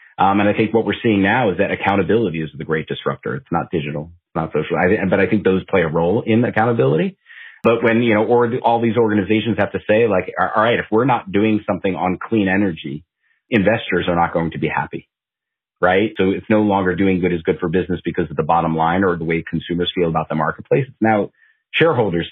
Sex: male